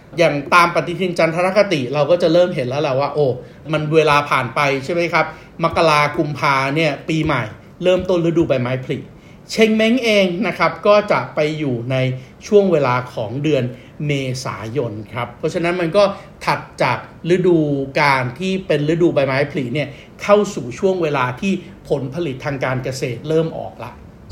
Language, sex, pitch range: Thai, male, 140-185 Hz